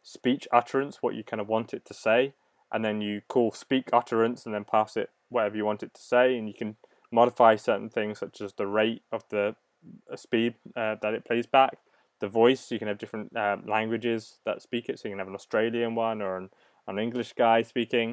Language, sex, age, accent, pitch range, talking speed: English, male, 20-39, British, 105-120 Hz, 225 wpm